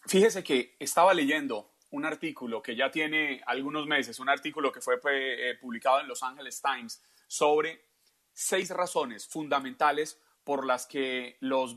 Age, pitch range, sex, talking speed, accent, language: 30-49, 130-170 Hz, male, 145 wpm, Colombian, Spanish